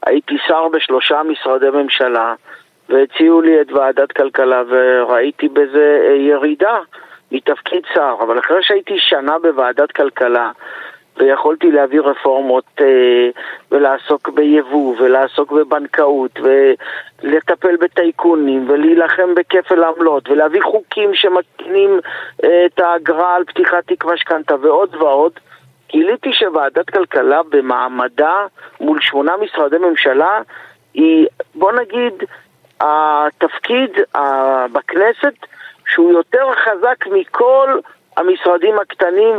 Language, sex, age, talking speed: Hebrew, male, 50-69, 95 wpm